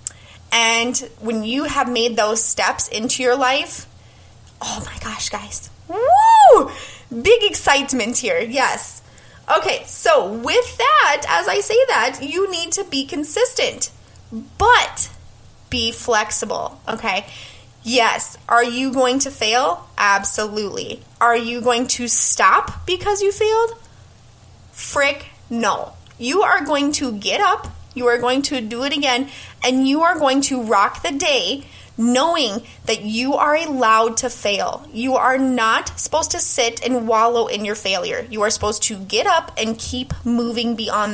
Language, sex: English, female